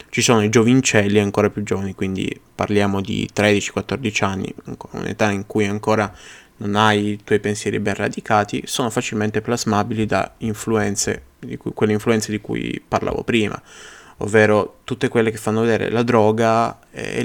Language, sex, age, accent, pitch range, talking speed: Italian, male, 20-39, native, 105-135 Hz, 155 wpm